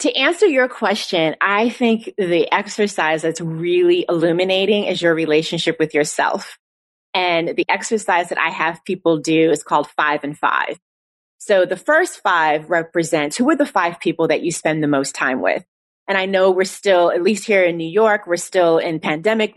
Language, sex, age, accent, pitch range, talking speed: English, female, 30-49, American, 170-235 Hz, 185 wpm